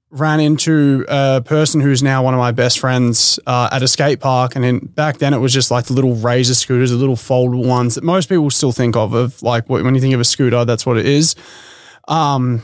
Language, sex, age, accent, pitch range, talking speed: English, male, 20-39, Australian, 130-155 Hz, 245 wpm